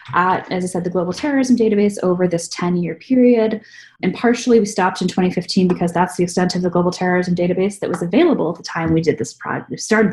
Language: English